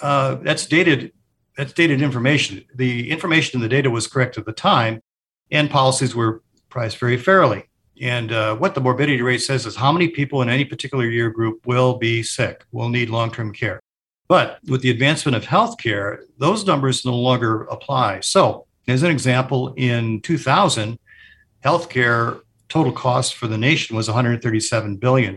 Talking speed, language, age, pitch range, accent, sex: 170 wpm, English, 50-69, 115-135 Hz, American, male